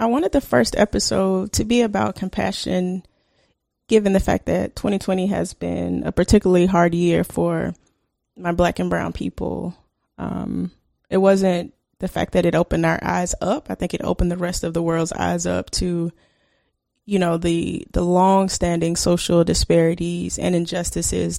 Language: English